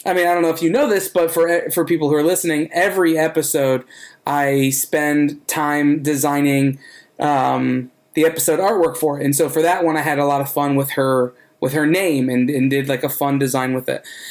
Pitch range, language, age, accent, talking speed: 140-165 Hz, English, 20-39, American, 220 wpm